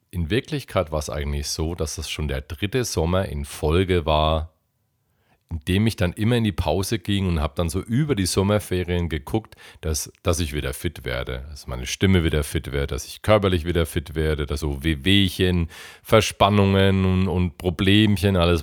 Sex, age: male, 40-59